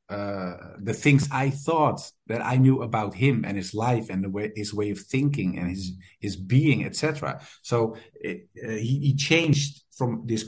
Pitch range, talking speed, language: 105-135 Hz, 190 wpm, English